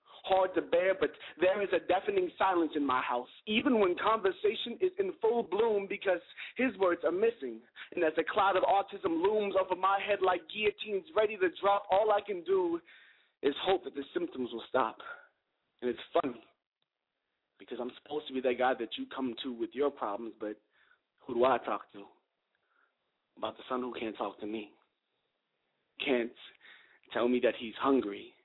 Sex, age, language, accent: male, 30-49, English, American